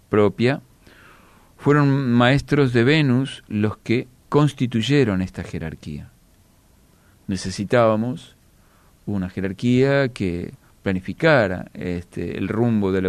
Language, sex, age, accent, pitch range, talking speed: Spanish, male, 40-59, Argentinian, 100-130 Hz, 85 wpm